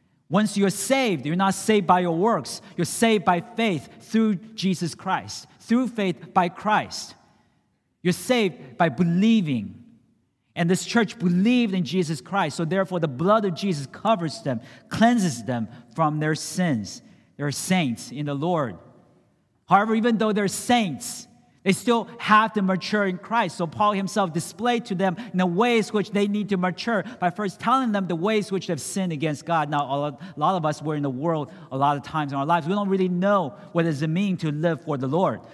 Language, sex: English, male